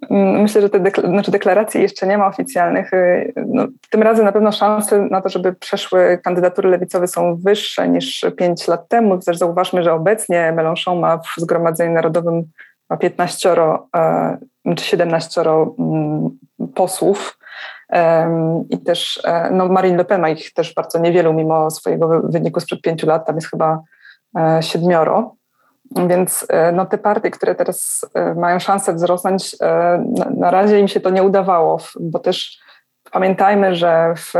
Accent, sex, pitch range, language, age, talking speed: native, female, 170-190 Hz, Polish, 20-39, 140 wpm